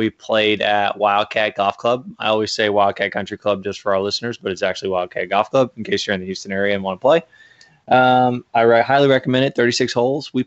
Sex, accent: male, American